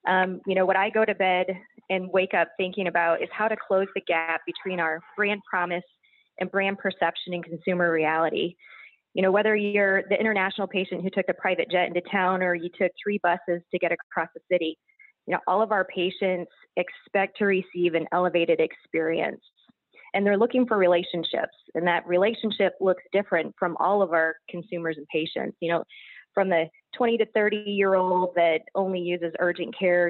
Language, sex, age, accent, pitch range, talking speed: English, female, 20-39, American, 175-205 Hz, 190 wpm